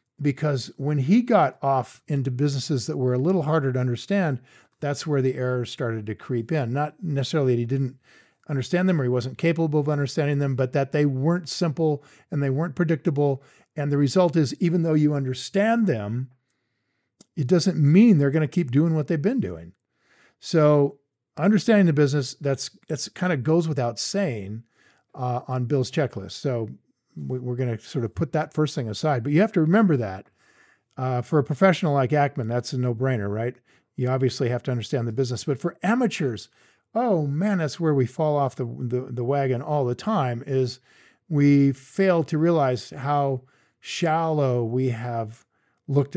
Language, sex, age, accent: English, male, 50-69, American